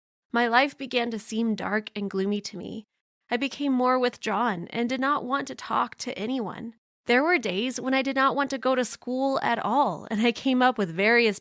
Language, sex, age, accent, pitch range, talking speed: English, female, 20-39, American, 200-260 Hz, 220 wpm